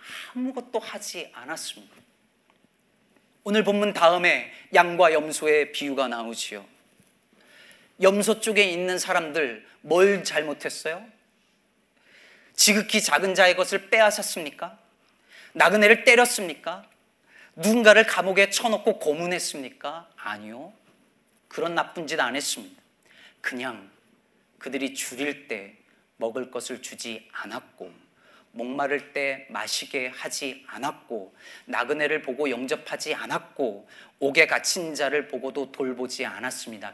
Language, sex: Korean, male